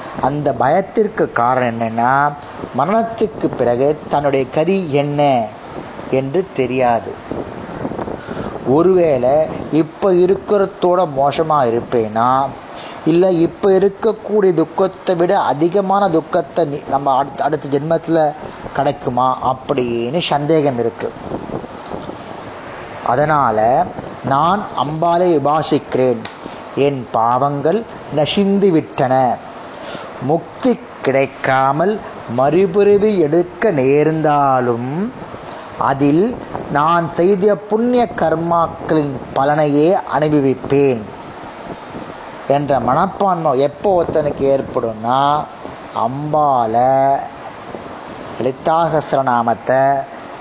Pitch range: 135-175 Hz